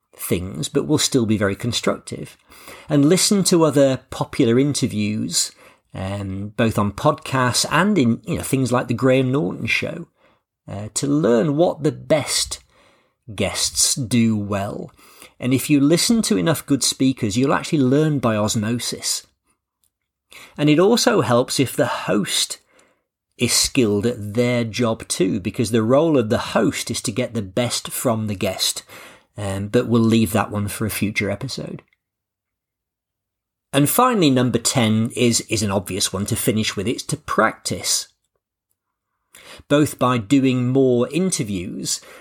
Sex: male